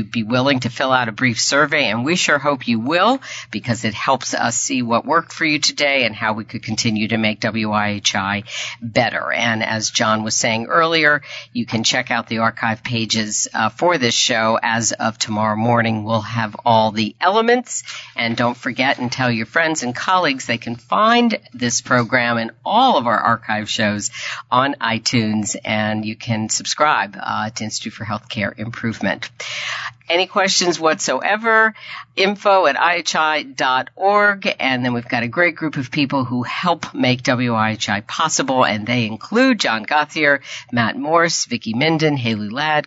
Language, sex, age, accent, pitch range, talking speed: English, female, 50-69, American, 115-155 Hz, 170 wpm